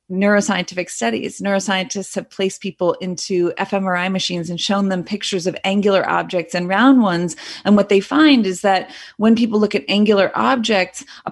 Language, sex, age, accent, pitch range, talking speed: English, female, 30-49, American, 180-215 Hz, 170 wpm